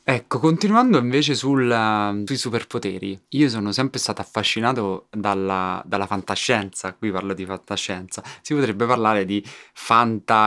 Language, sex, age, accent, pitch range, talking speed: Italian, male, 20-39, native, 100-115 Hz, 125 wpm